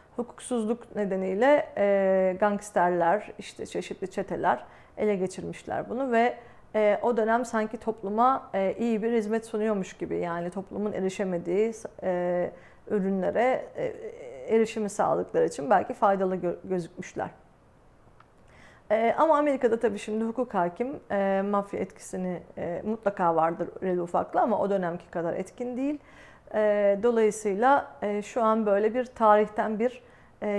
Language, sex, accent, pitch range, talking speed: Turkish, female, native, 190-225 Hz, 130 wpm